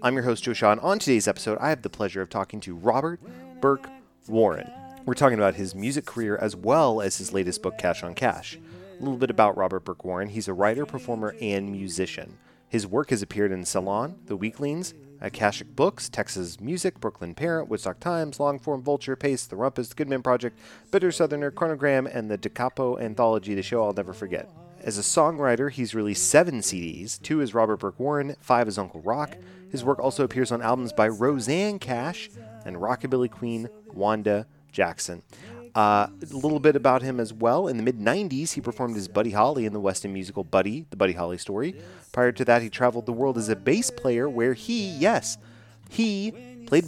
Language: English